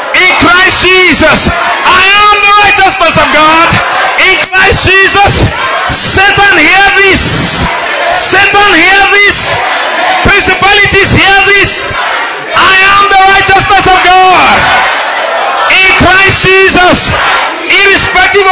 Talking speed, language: 100 wpm, English